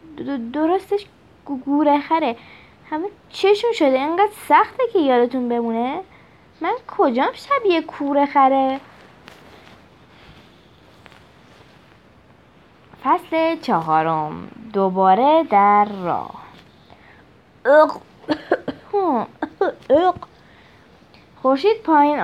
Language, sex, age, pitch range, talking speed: Persian, female, 20-39, 215-325 Hz, 60 wpm